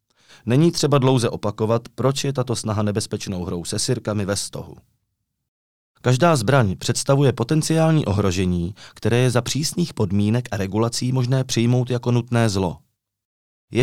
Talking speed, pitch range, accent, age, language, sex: 140 wpm, 105-130 Hz, native, 30-49, Czech, male